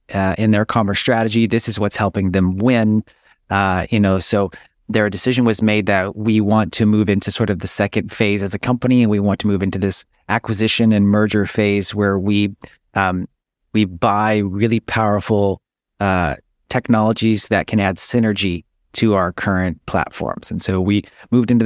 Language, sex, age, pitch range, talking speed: English, male, 30-49, 95-110 Hz, 185 wpm